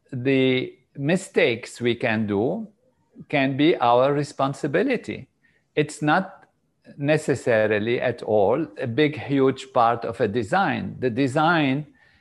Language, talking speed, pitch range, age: English, 115 wpm, 125-155 Hz, 50-69